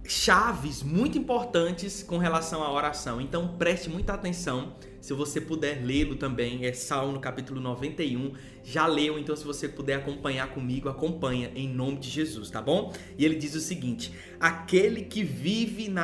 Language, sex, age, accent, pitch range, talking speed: Portuguese, male, 20-39, Brazilian, 145-190 Hz, 165 wpm